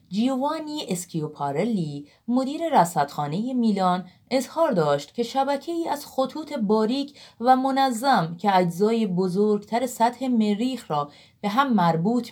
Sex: female